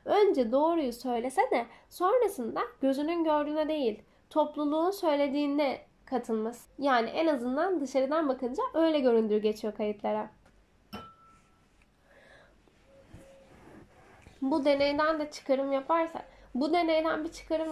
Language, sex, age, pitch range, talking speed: Turkish, female, 10-29, 250-325 Hz, 95 wpm